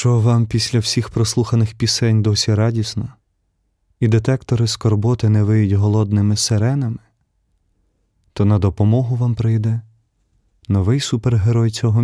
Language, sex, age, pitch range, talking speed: Ukrainian, male, 30-49, 105-120 Hz, 115 wpm